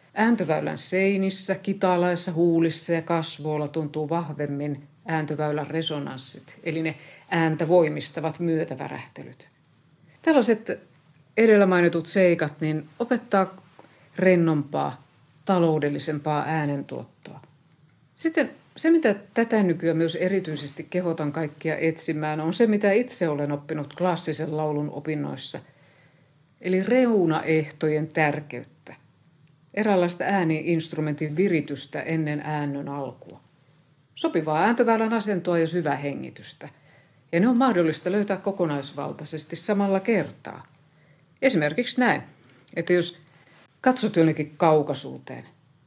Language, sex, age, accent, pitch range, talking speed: Finnish, female, 50-69, native, 150-185 Hz, 95 wpm